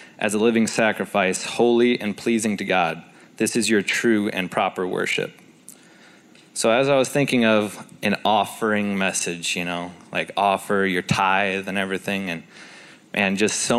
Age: 20-39